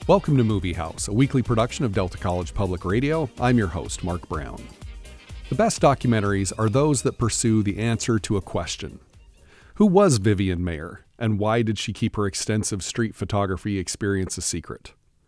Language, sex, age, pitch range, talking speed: English, male, 40-59, 95-120 Hz, 175 wpm